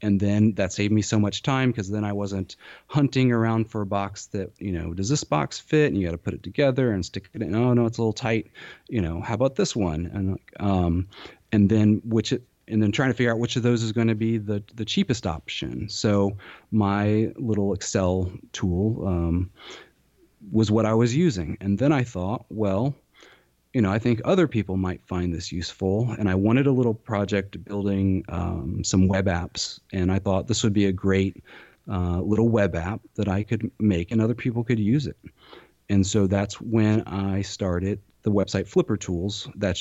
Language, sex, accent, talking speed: English, male, American, 210 wpm